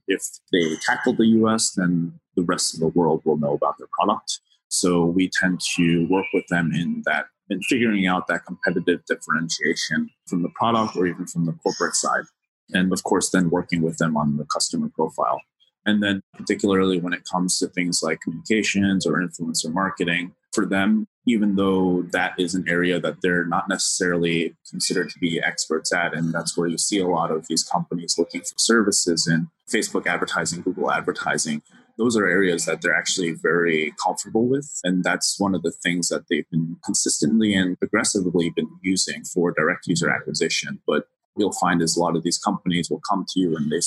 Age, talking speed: 20-39, 195 wpm